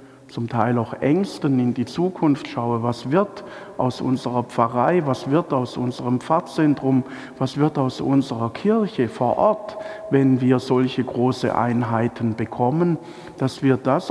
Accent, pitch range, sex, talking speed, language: German, 120-170 Hz, male, 145 wpm, German